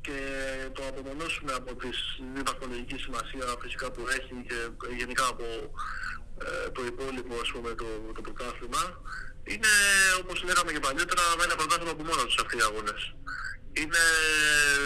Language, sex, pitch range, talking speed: Greek, male, 125-165 Hz, 135 wpm